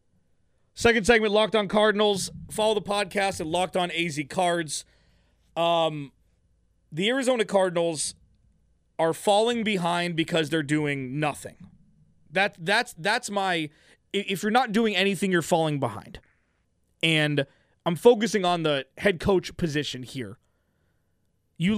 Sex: male